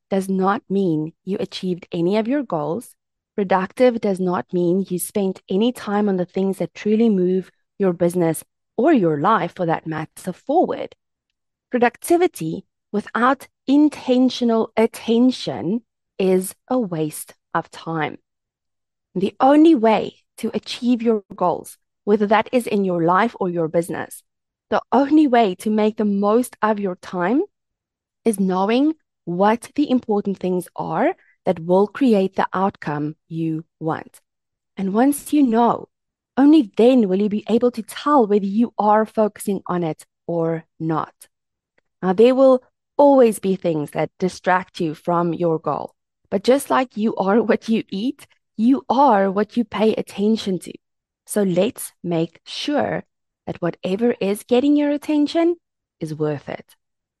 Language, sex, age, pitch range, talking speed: English, female, 20-39, 180-240 Hz, 150 wpm